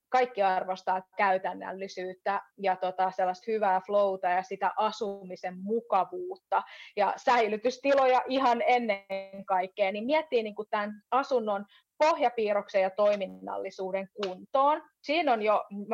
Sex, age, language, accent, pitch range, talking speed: female, 30-49, Finnish, native, 195-245 Hz, 105 wpm